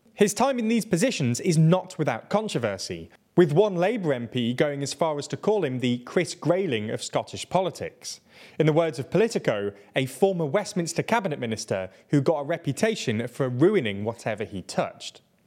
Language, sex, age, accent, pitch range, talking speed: English, male, 20-39, British, 130-185 Hz, 175 wpm